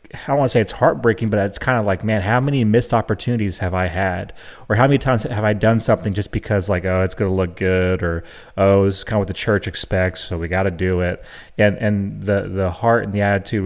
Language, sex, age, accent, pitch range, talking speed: English, male, 30-49, American, 95-115 Hz, 265 wpm